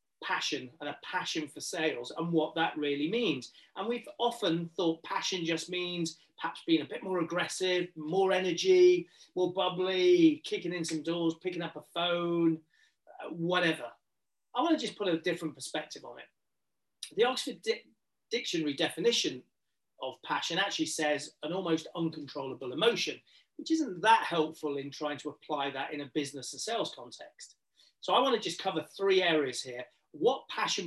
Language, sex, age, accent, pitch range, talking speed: English, male, 30-49, British, 155-195 Hz, 165 wpm